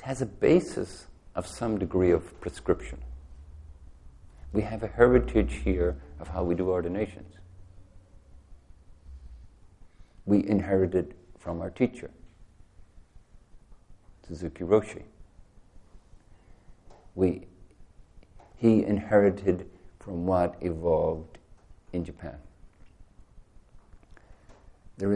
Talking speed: 80 wpm